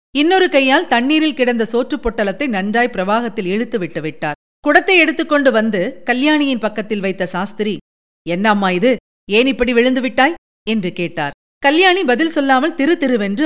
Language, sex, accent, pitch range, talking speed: Tamil, female, native, 210-270 Hz, 140 wpm